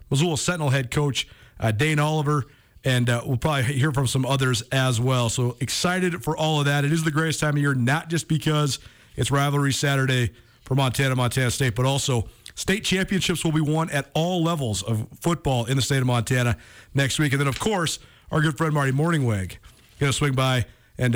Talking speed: 210 wpm